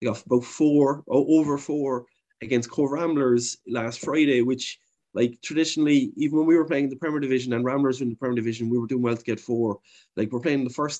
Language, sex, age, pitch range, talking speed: English, male, 20-39, 125-155 Hz, 230 wpm